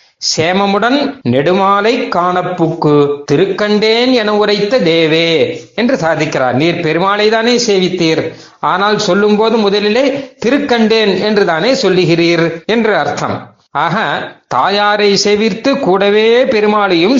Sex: male